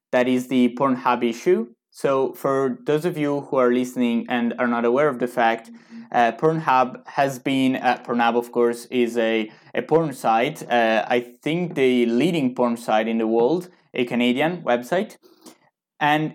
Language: English